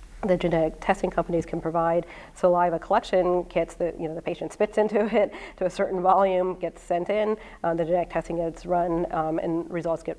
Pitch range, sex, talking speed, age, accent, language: 165-185 Hz, female, 200 wpm, 40-59, American, English